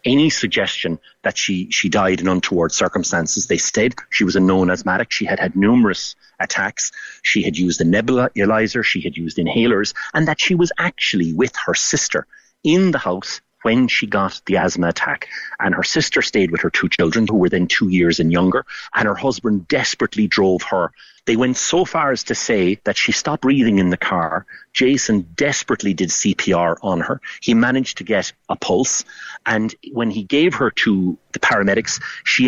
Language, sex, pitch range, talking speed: English, male, 90-125 Hz, 190 wpm